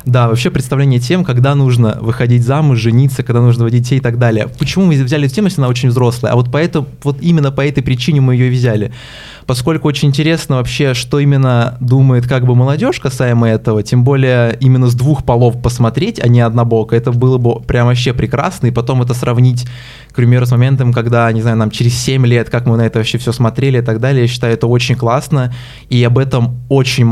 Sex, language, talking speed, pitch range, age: male, Russian, 215 wpm, 115-135 Hz, 20-39